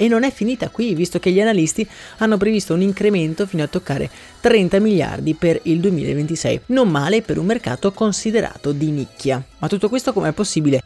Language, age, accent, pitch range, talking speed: Italian, 20-39, native, 145-195 Hz, 190 wpm